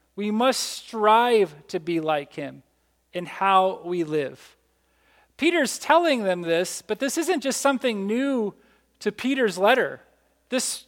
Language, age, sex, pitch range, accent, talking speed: English, 40-59, male, 210-290 Hz, American, 140 wpm